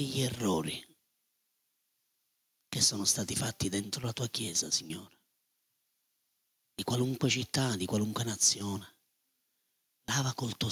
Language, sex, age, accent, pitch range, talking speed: Italian, male, 30-49, native, 100-130 Hz, 110 wpm